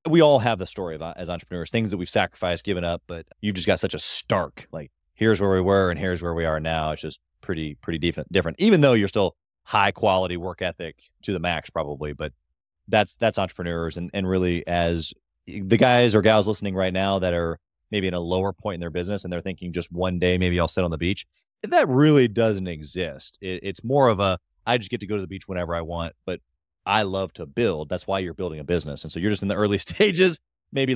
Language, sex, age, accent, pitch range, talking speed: English, male, 20-39, American, 90-115 Hz, 240 wpm